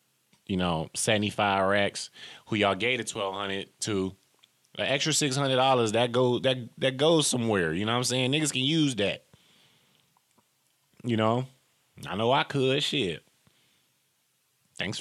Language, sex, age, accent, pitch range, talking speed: English, male, 20-39, American, 85-125 Hz, 155 wpm